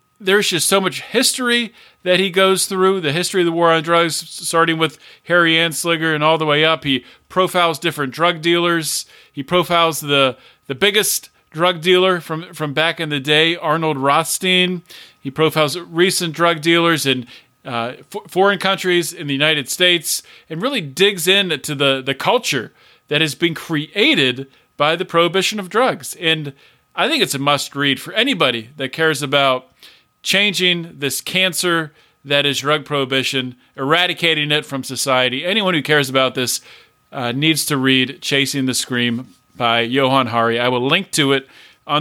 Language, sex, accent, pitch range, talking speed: English, male, American, 145-180 Hz, 170 wpm